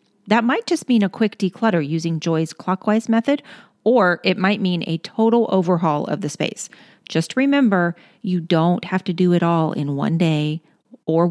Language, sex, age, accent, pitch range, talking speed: English, female, 40-59, American, 165-220 Hz, 180 wpm